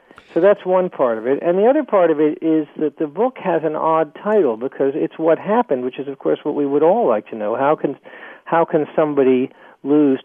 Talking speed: 240 wpm